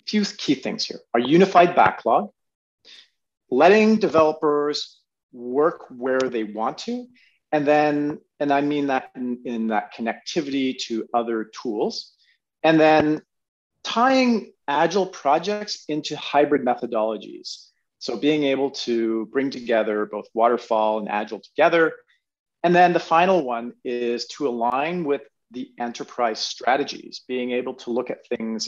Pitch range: 120-175 Hz